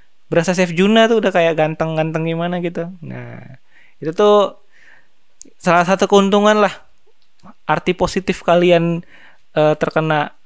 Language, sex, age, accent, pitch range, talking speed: Indonesian, male, 20-39, native, 155-185 Hz, 120 wpm